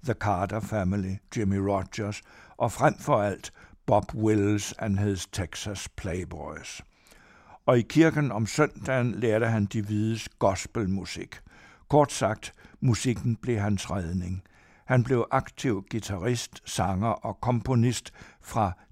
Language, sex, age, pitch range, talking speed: Danish, male, 60-79, 100-125 Hz, 125 wpm